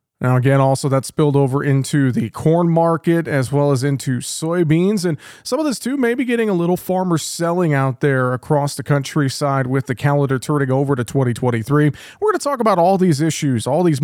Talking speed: 210 wpm